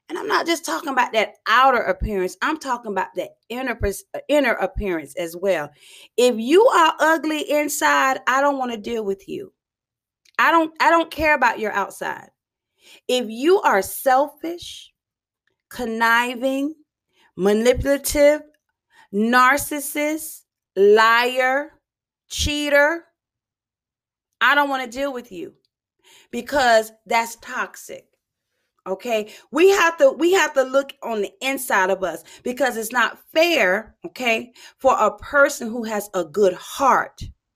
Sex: female